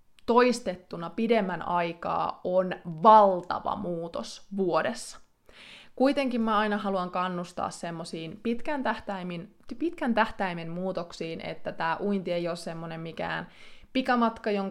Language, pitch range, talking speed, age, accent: Finnish, 175-230 Hz, 100 wpm, 20-39, native